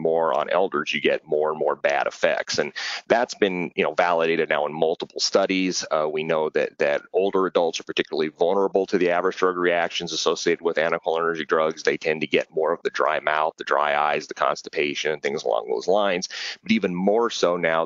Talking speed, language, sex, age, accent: 210 wpm, Italian, male, 30-49, American